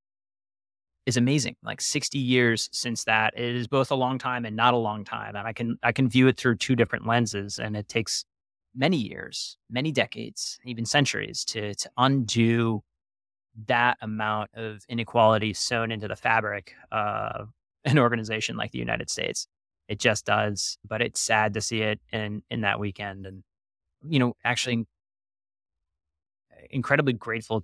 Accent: American